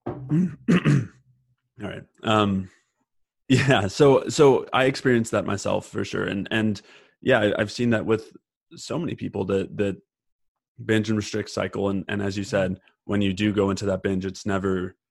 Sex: male